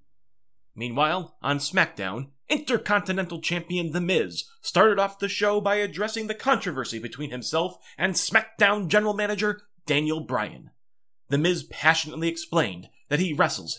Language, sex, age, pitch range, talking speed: English, male, 30-49, 150-215 Hz, 130 wpm